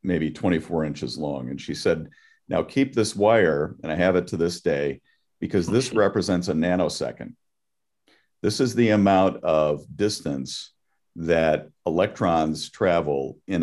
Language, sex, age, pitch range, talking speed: English, male, 50-69, 80-115 Hz, 145 wpm